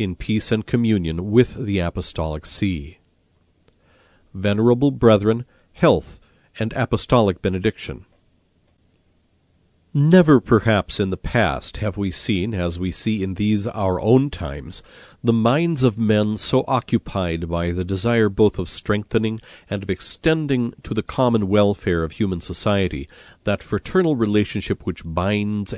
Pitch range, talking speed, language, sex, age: 85-115 Hz, 135 wpm, English, male, 40-59